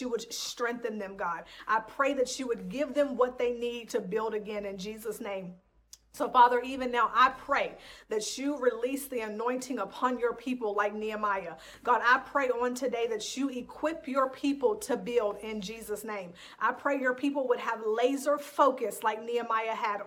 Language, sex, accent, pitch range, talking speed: English, female, American, 230-280 Hz, 185 wpm